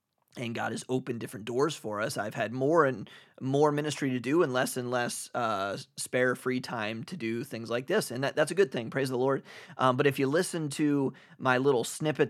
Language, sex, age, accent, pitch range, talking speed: English, male, 30-49, American, 115-140 Hz, 225 wpm